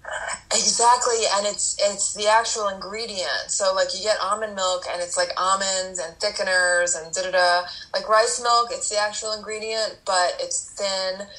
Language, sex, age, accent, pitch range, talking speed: English, female, 20-39, American, 175-220 Hz, 175 wpm